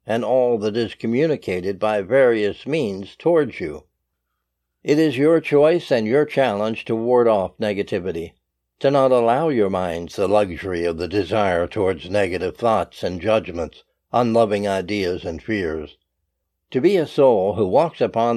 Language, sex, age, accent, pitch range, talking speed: English, male, 60-79, American, 105-135 Hz, 155 wpm